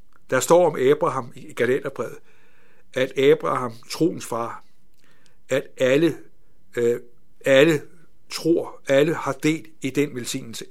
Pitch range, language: 120-150 Hz, Danish